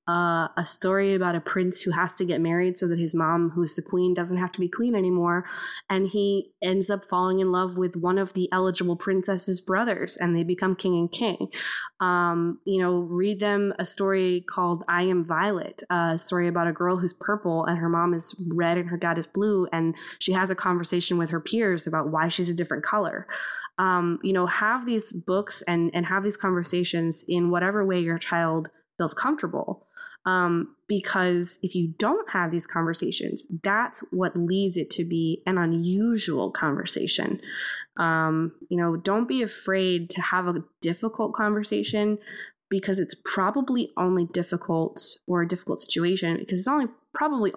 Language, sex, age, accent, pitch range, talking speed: English, female, 20-39, American, 170-195 Hz, 185 wpm